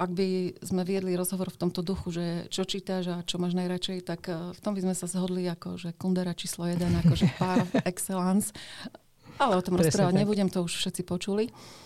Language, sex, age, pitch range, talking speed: Slovak, female, 40-59, 175-195 Hz, 190 wpm